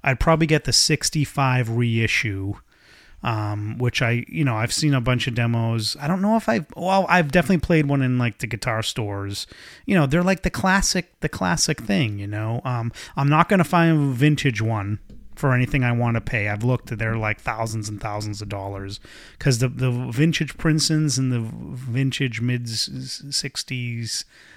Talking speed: 190 wpm